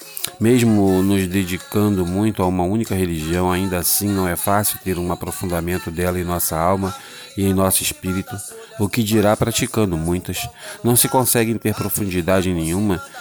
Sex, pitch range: male, 85-100 Hz